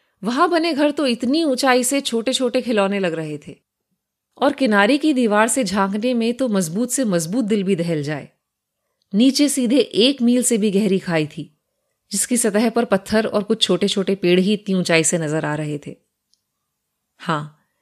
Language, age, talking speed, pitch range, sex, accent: Hindi, 30-49, 185 wpm, 180-245 Hz, female, native